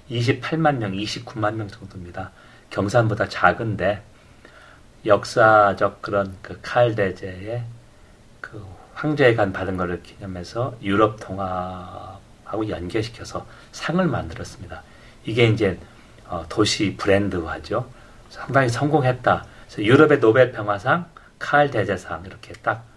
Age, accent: 40-59, native